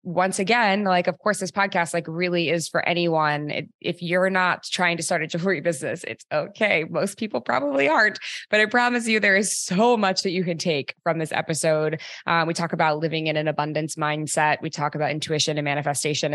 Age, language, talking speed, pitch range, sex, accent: 20-39, English, 215 wpm, 160-200 Hz, female, American